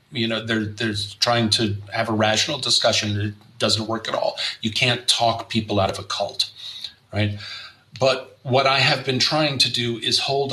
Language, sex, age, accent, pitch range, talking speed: English, male, 40-59, American, 110-130 Hz, 195 wpm